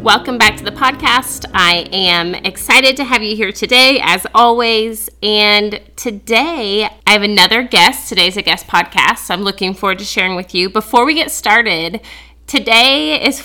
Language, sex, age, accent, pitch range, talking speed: English, female, 30-49, American, 180-230 Hz, 170 wpm